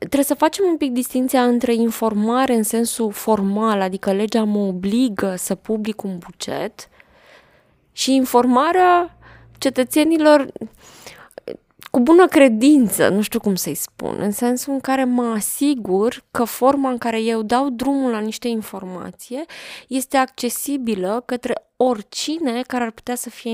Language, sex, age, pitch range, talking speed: Romanian, female, 20-39, 210-255 Hz, 140 wpm